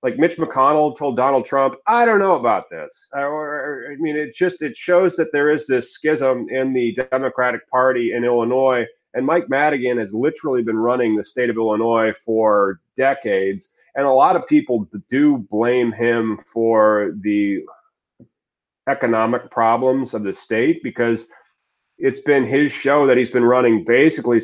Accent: American